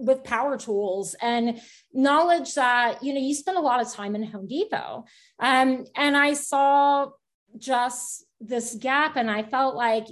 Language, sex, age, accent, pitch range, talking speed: English, female, 30-49, American, 225-280 Hz, 165 wpm